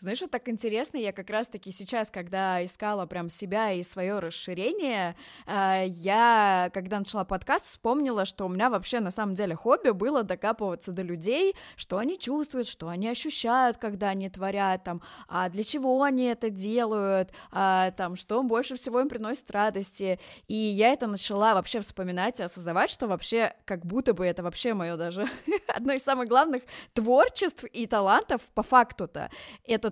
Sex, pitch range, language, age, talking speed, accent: female, 190-235 Hz, Russian, 20-39, 165 wpm, native